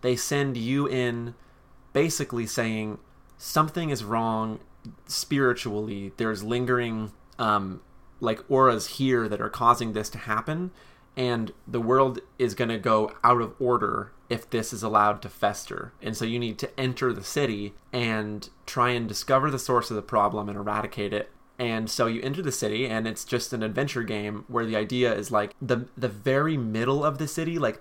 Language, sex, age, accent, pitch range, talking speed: English, male, 30-49, American, 110-130 Hz, 180 wpm